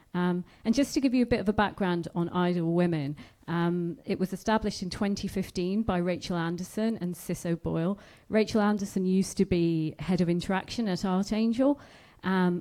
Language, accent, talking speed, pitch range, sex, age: English, British, 175 wpm, 170-195 Hz, female, 40-59